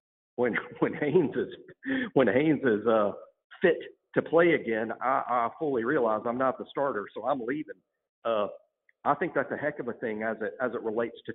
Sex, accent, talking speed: male, American, 200 wpm